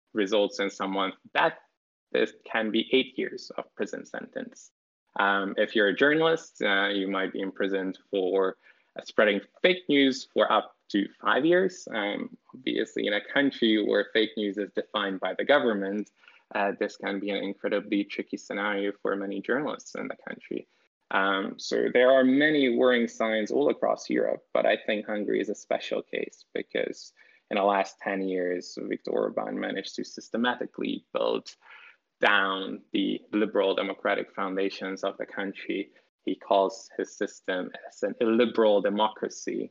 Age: 20-39